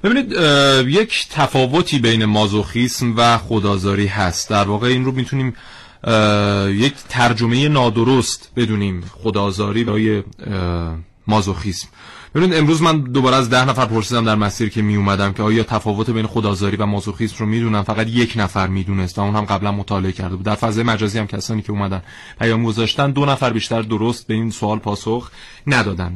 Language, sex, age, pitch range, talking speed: Persian, male, 30-49, 105-140 Hz, 155 wpm